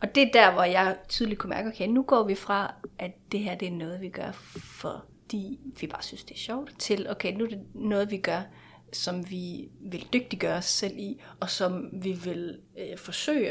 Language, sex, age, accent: Danish, female, 30-49, native